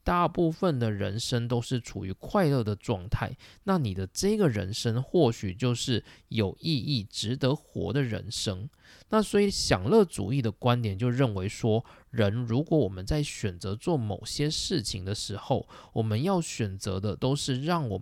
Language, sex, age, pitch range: Chinese, male, 20-39, 105-140 Hz